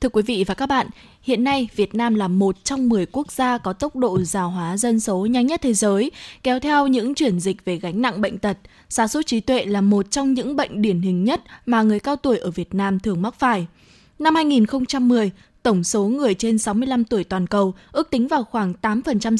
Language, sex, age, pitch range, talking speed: Vietnamese, female, 20-39, 205-260 Hz, 230 wpm